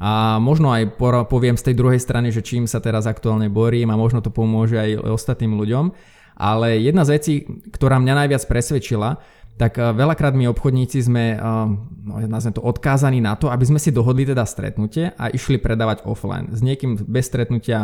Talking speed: 180 wpm